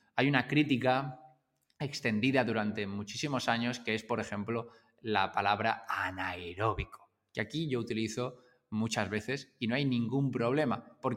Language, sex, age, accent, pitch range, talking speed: Spanish, male, 20-39, Spanish, 110-140 Hz, 140 wpm